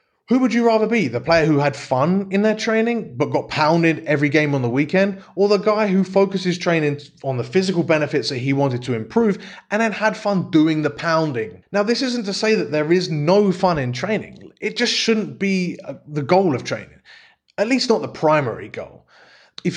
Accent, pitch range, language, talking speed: British, 140-195 Hz, English, 215 wpm